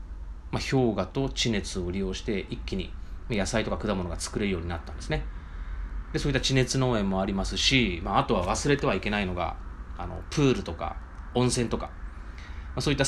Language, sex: Japanese, male